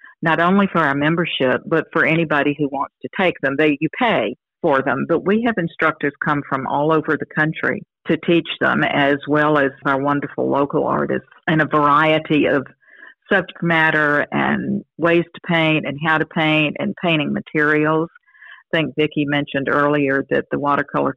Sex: female